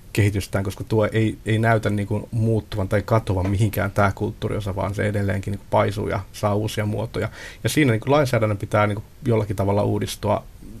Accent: native